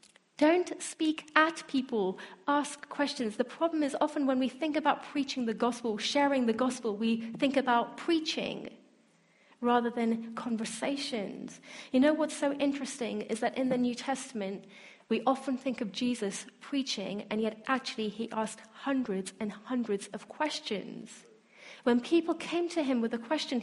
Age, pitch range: 30-49, 220-280 Hz